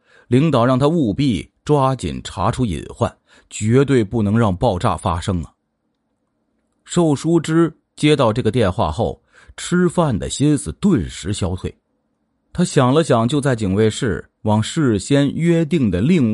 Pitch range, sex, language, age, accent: 105-155 Hz, male, Chinese, 30-49, native